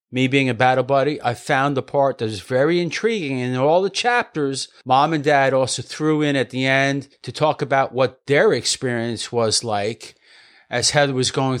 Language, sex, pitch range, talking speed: English, male, 120-150 Hz, 195 wpm